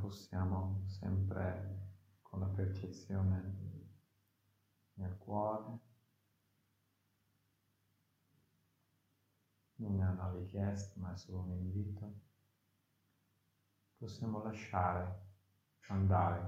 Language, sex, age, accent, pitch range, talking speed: Italian, male, 50-69, native, 95-110 Hz, 70 wpm